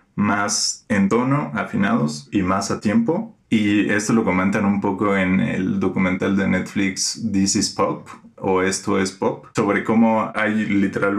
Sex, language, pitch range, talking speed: male, Spanish, 95-110 Hz, 160 wpm